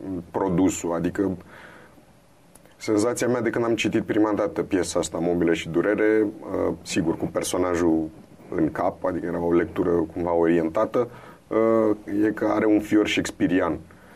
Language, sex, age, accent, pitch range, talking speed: Romanian, male, 30-49, native, 85-105 Hz, 135 wpm